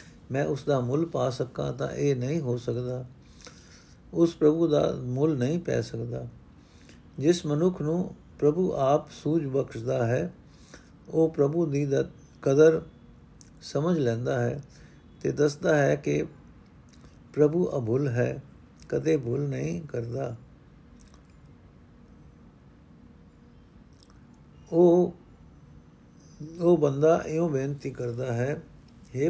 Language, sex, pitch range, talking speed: Punjabi, male, 125-155 Hz, 100 wpm